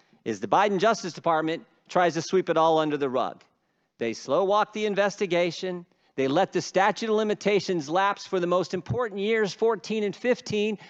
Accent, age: American, 50-69